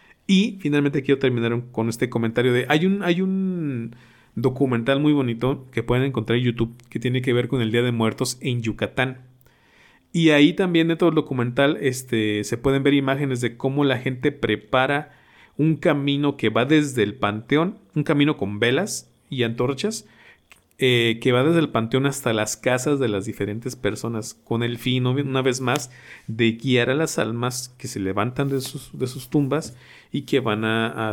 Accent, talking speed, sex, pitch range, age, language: Mexican, 190 wpm, male, 115-140 Hz, 40-59, Spanish